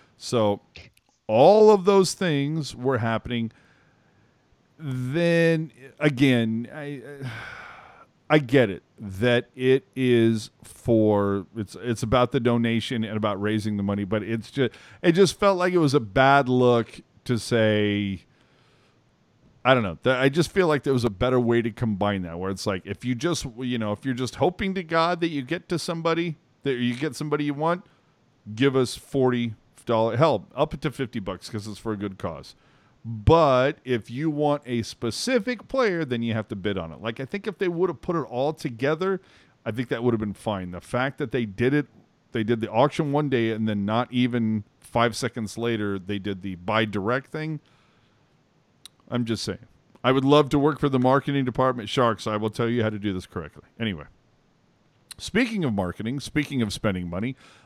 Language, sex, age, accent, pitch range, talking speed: English, male, 40-59, American, 110-145 Hz, 190 wpm